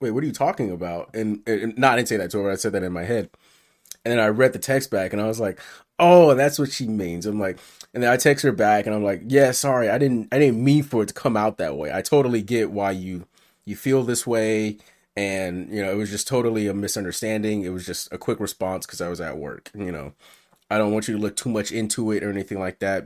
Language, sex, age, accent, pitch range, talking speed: English, male, 20-39, American, 95-120 Hz, 280 wpm